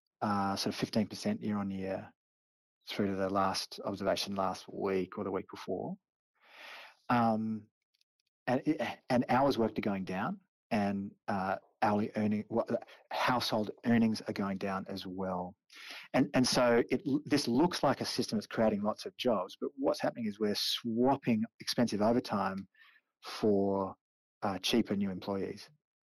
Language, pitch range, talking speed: English, 95-120 Hz, 150 wpm